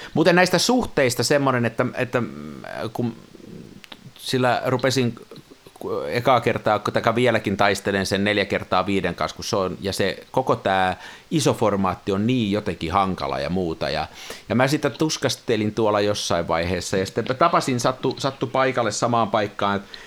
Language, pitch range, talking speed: Finnish, 100-145 Hz, 155 wpm